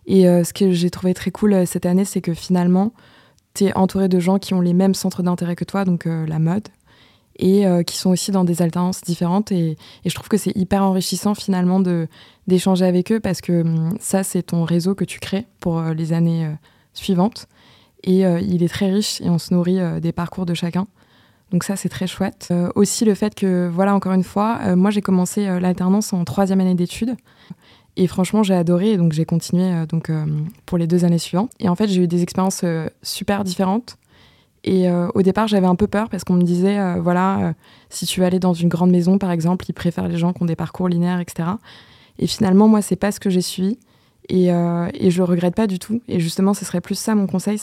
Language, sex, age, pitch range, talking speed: French, female, 20-39, 175-195 Hz, 230 wpm